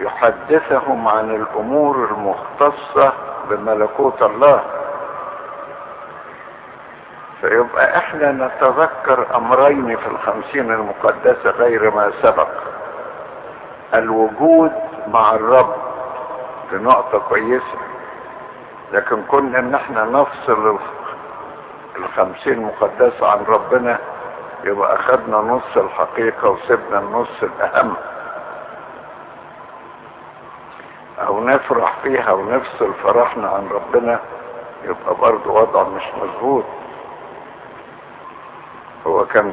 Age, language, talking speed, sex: 60-79, Arabic, 75 wpm, male